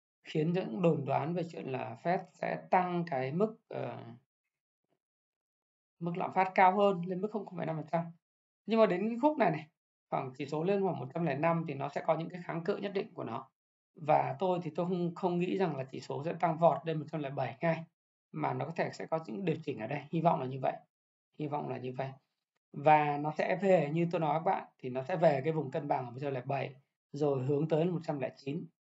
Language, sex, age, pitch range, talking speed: Vietnamese, male, 20-39, 135-175 Hz, 220 wpm